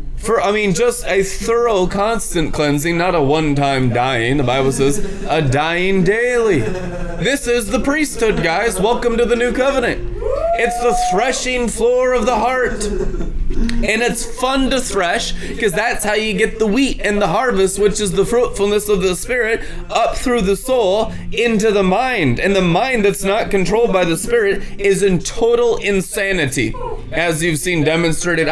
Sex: male